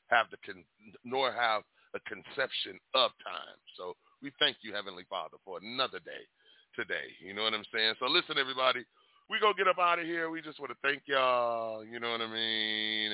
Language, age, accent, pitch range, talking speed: English, 30-49, American, 110-140 Hz, 210 wpm